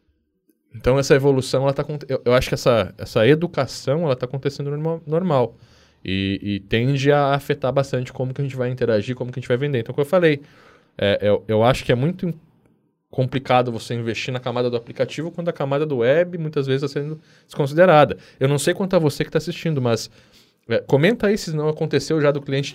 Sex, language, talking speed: male, Portuguese, 220 wpm